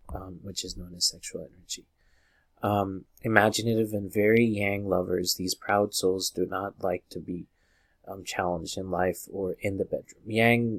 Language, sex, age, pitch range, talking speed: English, male, 20-39, 90-110 Hz, 165 wpm